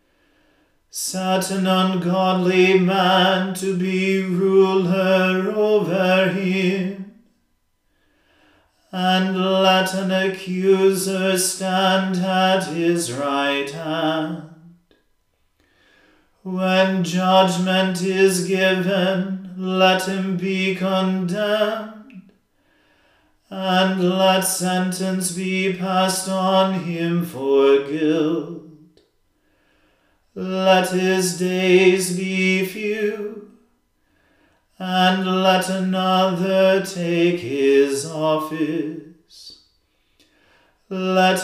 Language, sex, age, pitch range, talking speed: English, male, 40-59, 180-190 Hz, 70 wpm